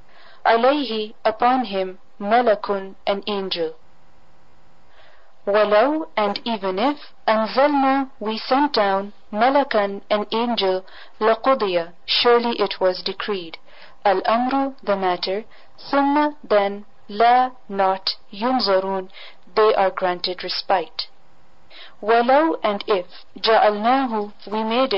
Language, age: English, 40-59